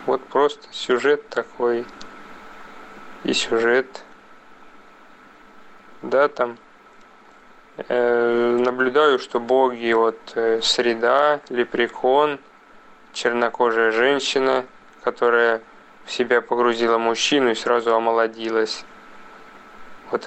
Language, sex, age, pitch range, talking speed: Russian, male, 20-39, 120-130 Hz, 80 wpm